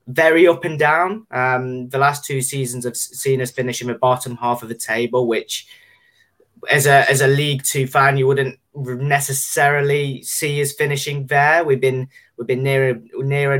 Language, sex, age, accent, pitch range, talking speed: English, male, 20-39, British, 120-140 Hz, 170 wpm